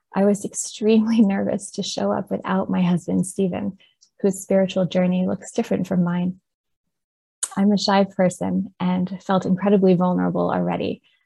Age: 20-39